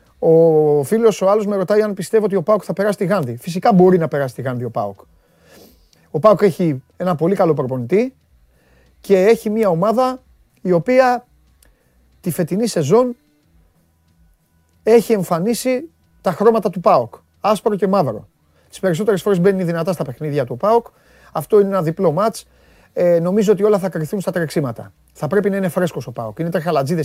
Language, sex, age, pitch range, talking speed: Greek, male, 30-49, 140-205 Hz, 135 wpm